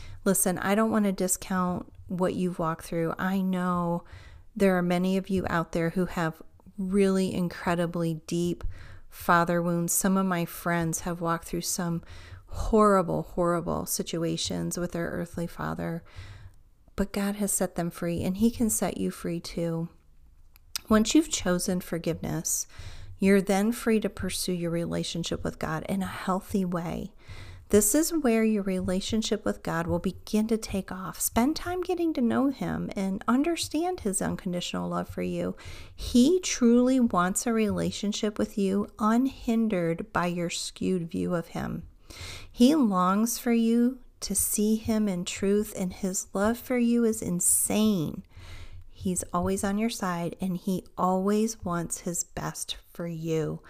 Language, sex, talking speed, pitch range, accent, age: English, female, 155 wpm, 165-210 Hz, American, 40-59